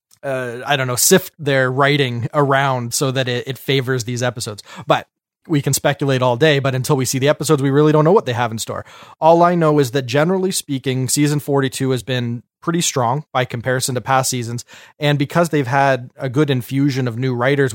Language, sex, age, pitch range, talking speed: English, male, 30-49, 130-150 Hz, 215 wpm